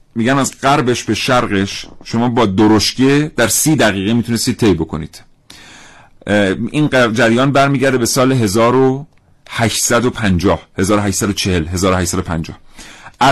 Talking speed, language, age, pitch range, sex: 100 wpm, Persian, 40-59, 95-130 Hz, male